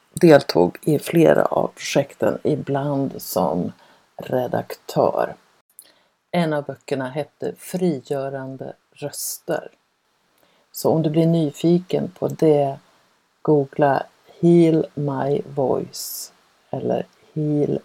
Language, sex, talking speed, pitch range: Swedish, female, 90 wpm, 140-165 Hz